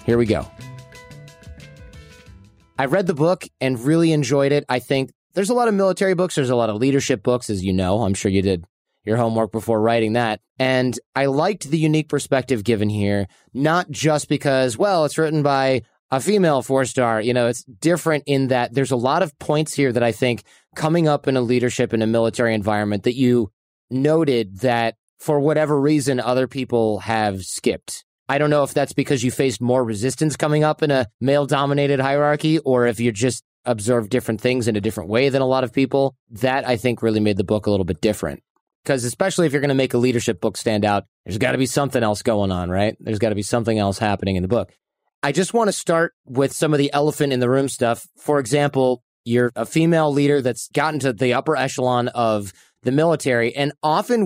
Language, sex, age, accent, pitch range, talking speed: English, male, 30-49, American, 115-145 Hz, 210 wpm